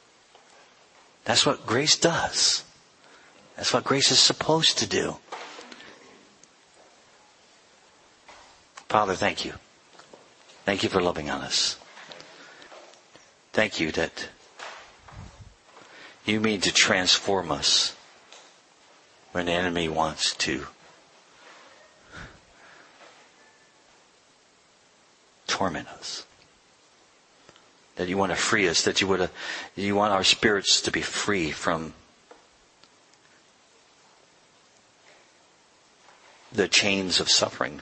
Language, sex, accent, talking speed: English, male, American, 90 wpm